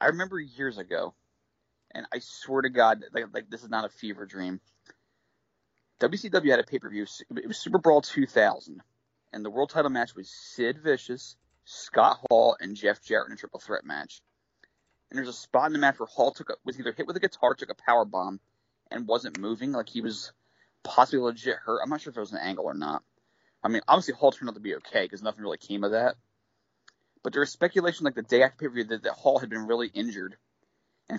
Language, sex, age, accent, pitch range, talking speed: English, male, 30-49, American, 110-150 Hz, 225 wpm